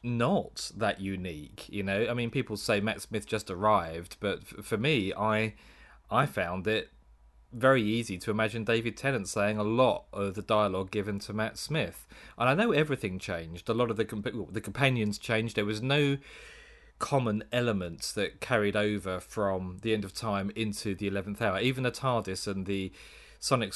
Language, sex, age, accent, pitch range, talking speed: English, male, 30-49, British, 100-130 Hz, 185 wpm